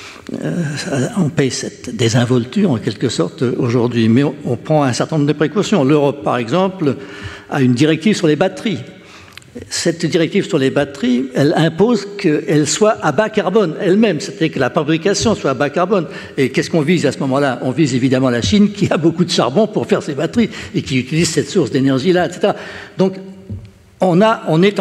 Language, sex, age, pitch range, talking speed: French, male, 60-79, 135-180 Hz, 195 wpm